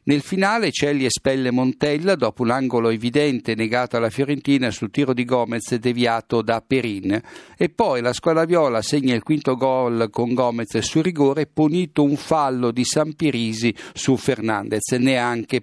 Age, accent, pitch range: 50-69, native, 115-150 Hz